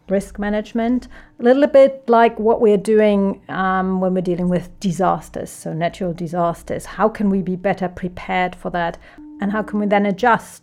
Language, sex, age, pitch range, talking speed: English, female, 40-59, 180-220 Hz, 180 wpm